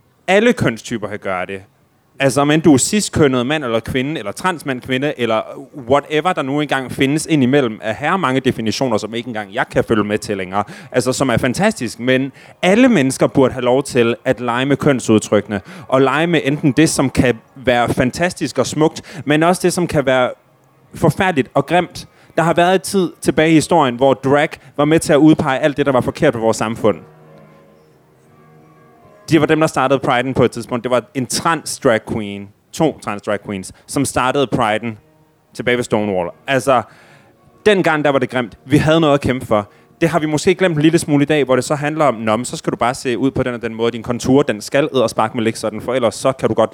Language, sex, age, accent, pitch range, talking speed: Danish, male, 30-49, native, 115-150 Hz, 220 wpm